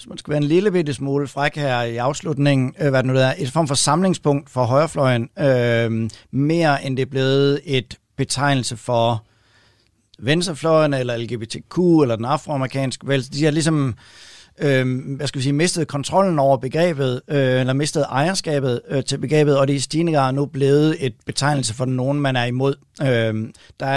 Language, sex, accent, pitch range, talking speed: Danish, male, native, 130-155 Hz, 185 wpm